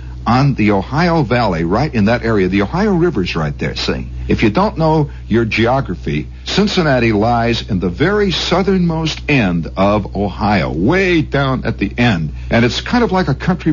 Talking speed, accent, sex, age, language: 180 wpm, American, male, 60-79, English